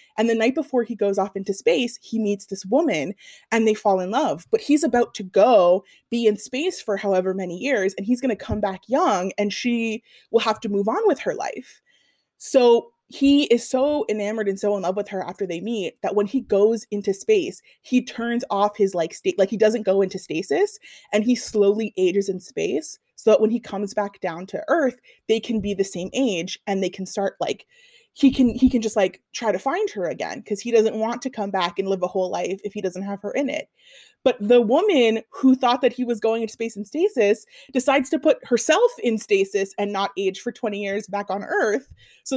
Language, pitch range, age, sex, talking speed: English, 200-260 Hz, 20-39, female, 235 wpm